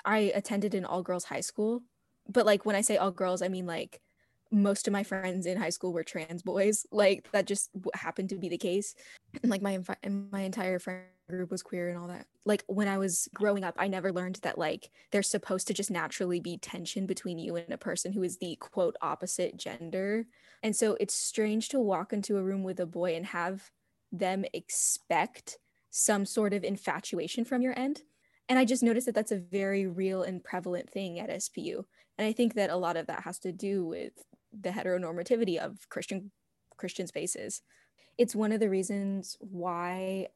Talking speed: 200 wpm